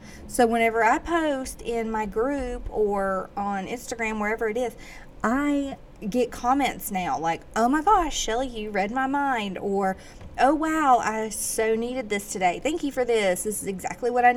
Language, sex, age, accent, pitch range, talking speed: English, female, 30-49, American, 195-255 Hz, 180 wpm